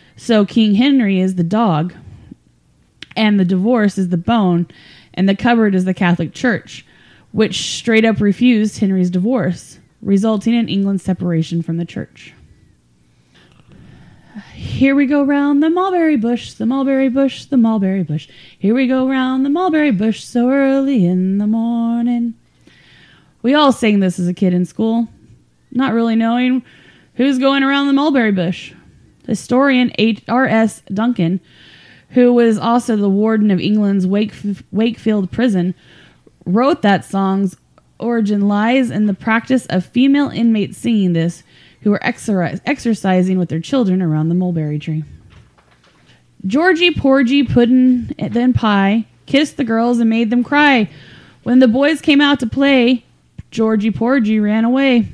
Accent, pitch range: American, 190-255 Hz